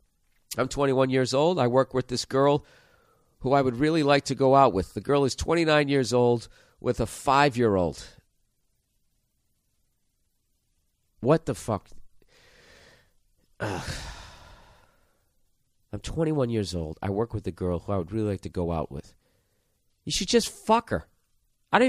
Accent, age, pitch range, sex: American, 40-59, 130-180 Hz, male